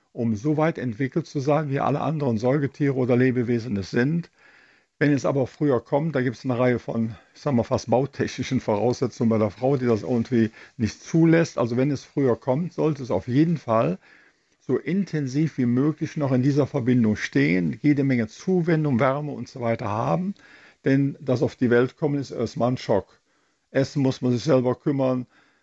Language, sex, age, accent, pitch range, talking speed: German, male, 50-69, German, 120-150 Hz, 185 wpm